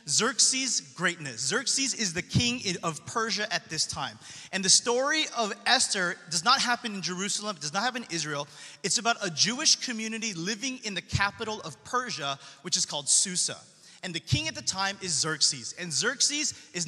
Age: 30-49